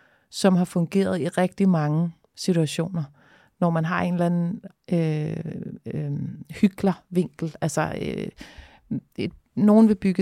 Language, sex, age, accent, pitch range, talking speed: Danish, female, 30-49, native, 170-200 Hz, 125 wpm